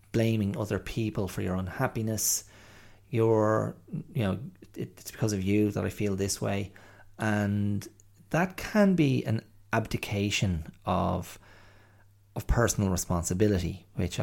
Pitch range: 95-110 Hz